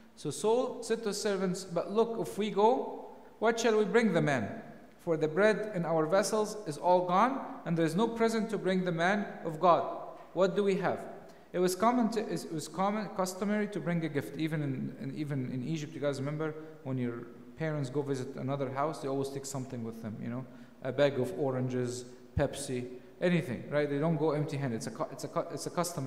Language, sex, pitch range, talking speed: English, male, 140-200 Hz, 220 wpm